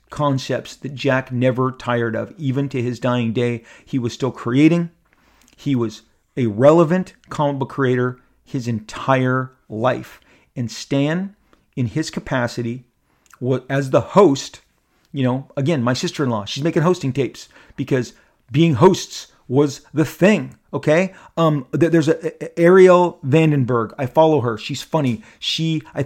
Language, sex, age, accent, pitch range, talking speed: English, male, 40-59, American, 125-160 Hz, 145 wpm